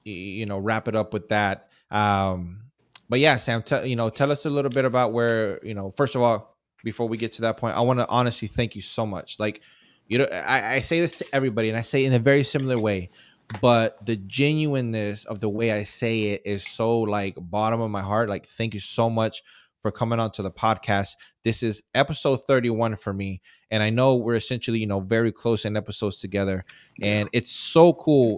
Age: 20-39